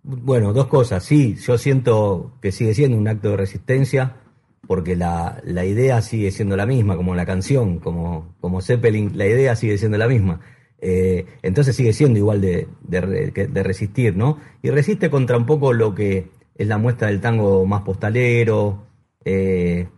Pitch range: 105-130 Hz